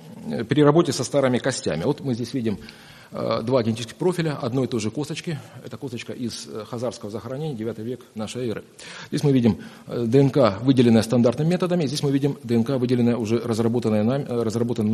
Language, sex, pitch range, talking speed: Russian, male, 115-145 Hz, 170 wpm